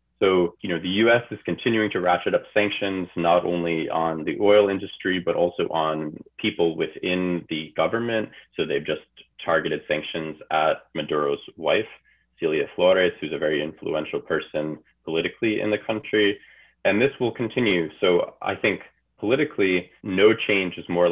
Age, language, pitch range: 30-49, English, 85-105 Hz